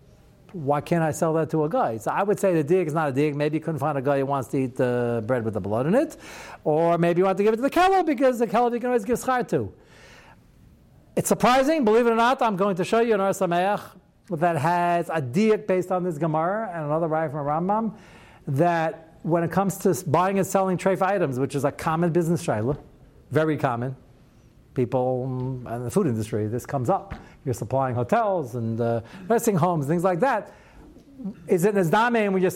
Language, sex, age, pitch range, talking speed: English, male, 60-79, 140-190 Hz, 225 wpm